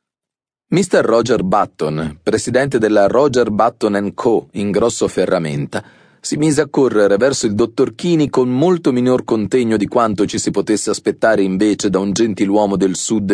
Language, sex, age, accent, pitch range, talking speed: Italian, male, 30-49, native, 100-145 Hz, 155 wpm